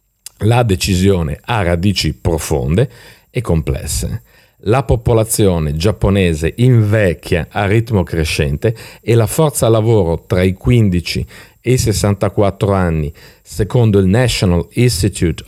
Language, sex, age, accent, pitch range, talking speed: Italian, male, 50-69, native, 90-120 Hz, 110 wpm